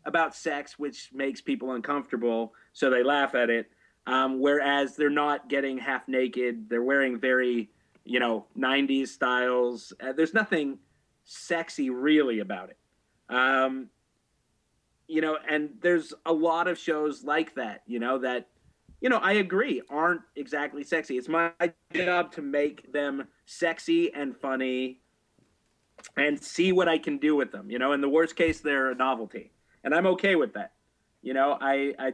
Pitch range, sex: 125-160 Hz, male